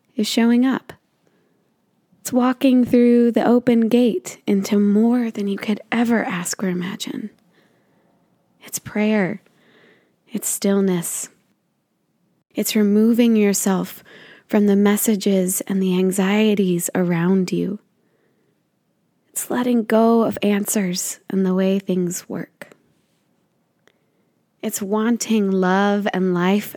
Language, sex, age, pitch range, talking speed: English, female, 20-39, 190-230 Hz, 110 wpm